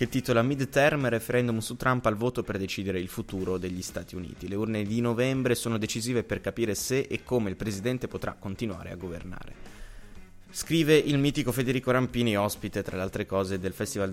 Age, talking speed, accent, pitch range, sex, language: 20-39, 185 wpm, native, 100-125 Hz, male, Italian